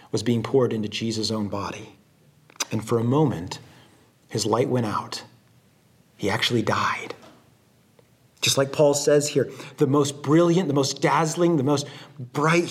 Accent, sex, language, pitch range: American, male, English, 115-140 Hz